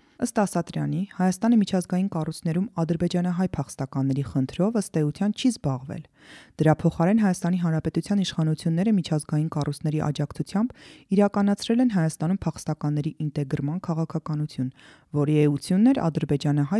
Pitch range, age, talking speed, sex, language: 145-175 Hz, 30-49, 80 wpm, female, English